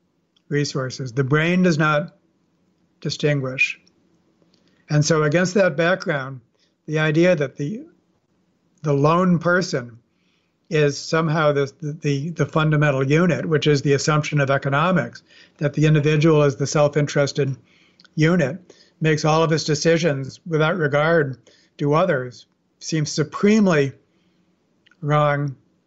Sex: male